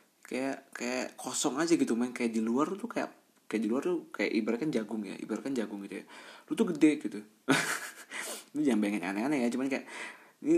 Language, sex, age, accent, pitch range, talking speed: Indonesian, male, 20-39, native, 105-175 Hz, 210 wpm